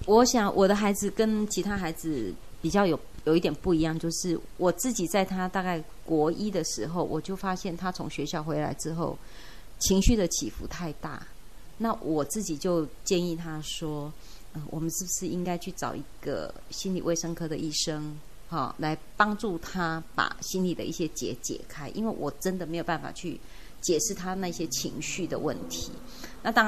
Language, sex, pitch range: Chinese, female, 160-190 Hz